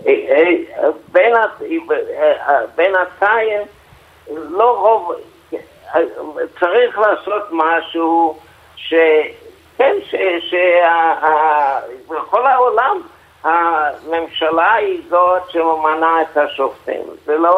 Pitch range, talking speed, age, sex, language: 145-215 Hz, 60 wpm, 50-69, male, Hebrew